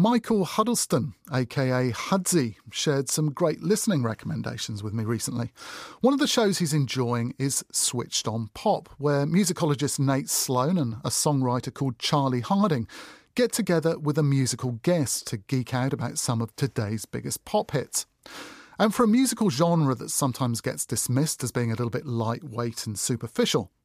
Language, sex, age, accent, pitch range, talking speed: English, male, 40-59, British, 120-170 Hz, 165 wpm